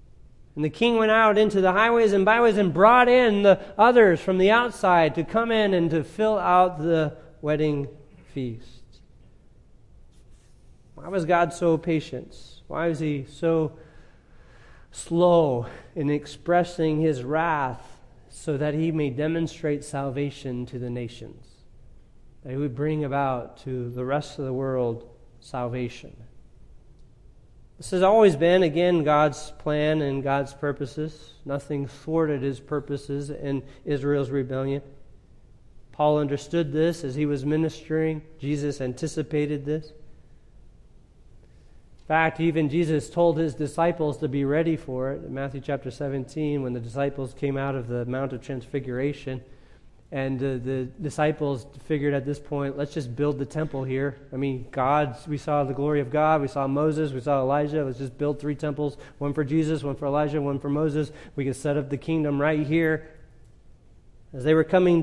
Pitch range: 135-160 Hz